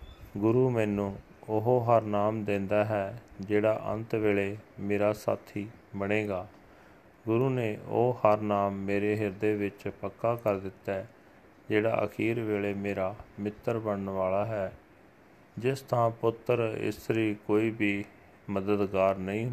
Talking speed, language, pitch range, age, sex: 120 wpm, Punjabi, 100-110 Hz, 30-49, male